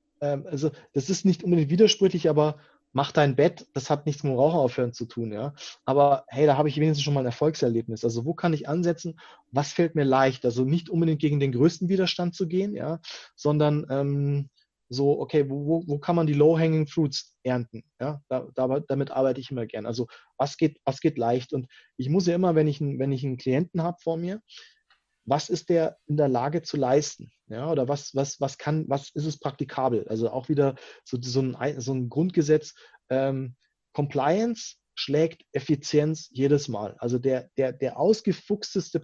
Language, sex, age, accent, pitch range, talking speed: German, male, 30-49, German, 135-170 Hz, 195 wpm